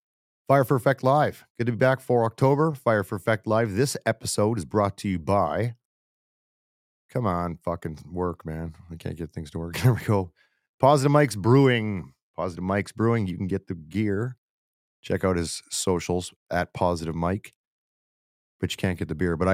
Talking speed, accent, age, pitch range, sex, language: 185 wpm, American, 30-49, 85-105 Hz, male, English